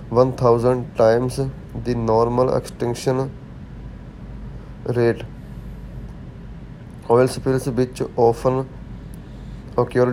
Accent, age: Indian, 20-39